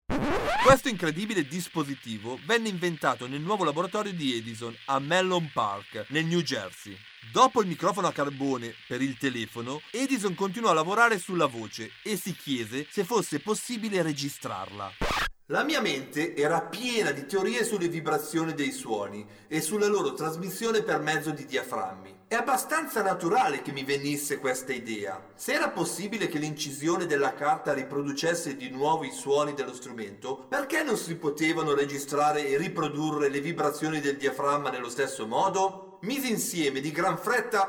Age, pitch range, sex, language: 40-59, 140-215 Hz, male, Italian